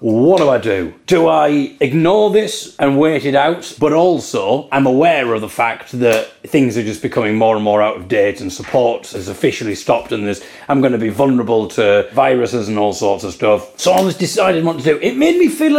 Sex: male